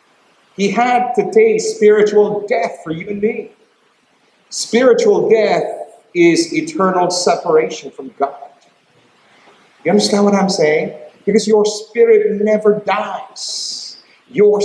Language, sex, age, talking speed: English, male, 50-69, 115 wpm